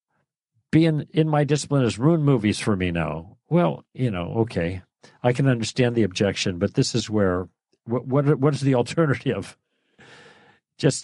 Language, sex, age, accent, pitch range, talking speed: English, male, 50-69, American, 100-130 Hz, 165 wpm